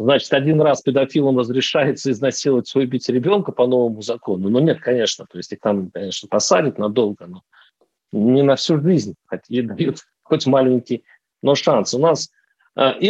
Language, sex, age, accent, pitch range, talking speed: Russian, male, 40-59, native, 135-185 Hz, 165 wpm